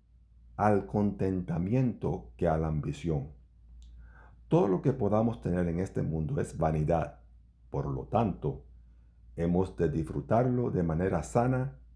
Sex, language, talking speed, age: male, Spanish, 125 wpm, 50-69